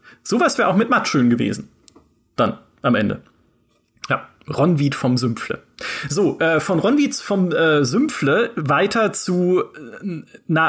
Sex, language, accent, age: male, German, German, 30-49